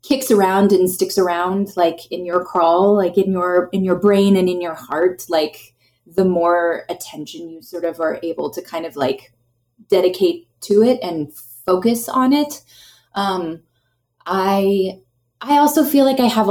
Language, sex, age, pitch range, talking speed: English, female, 20-39, 170-215 Hz, 170 wpm